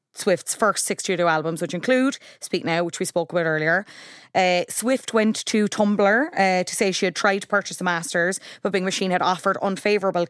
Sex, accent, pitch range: female, Irish, 175-200 Hz